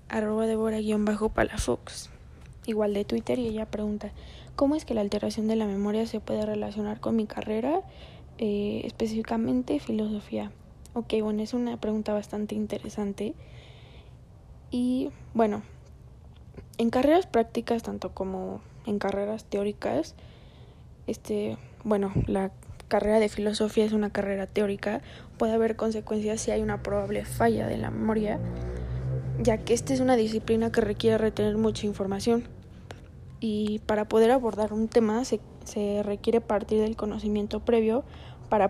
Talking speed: 140 wpm